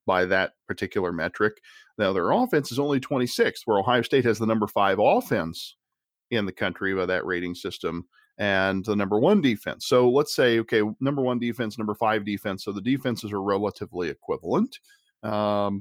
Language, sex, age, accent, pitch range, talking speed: English, male, 40-59, American, 95-115 Hz, 180 wpm